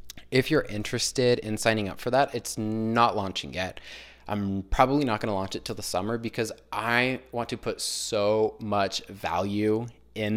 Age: 20-39